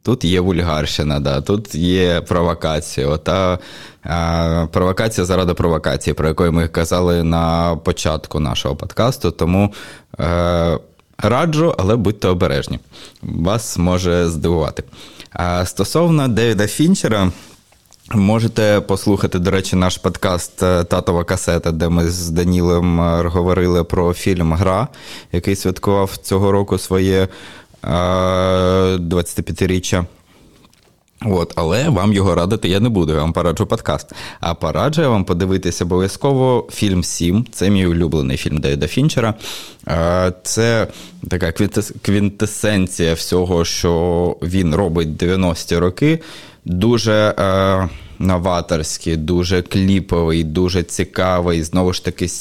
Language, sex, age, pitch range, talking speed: Ukrainian, male, 20-39, 85-100 Hz, 110 wpm